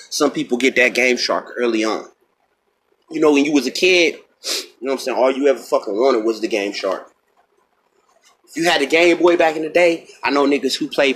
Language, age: English, 30-49